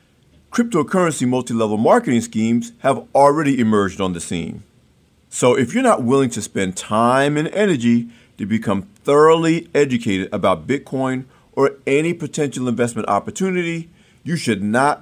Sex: male